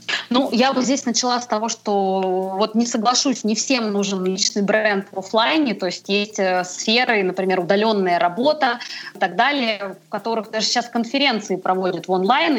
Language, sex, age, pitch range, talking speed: Russian, female, 20-39, 195-235 Hz, 170 wpm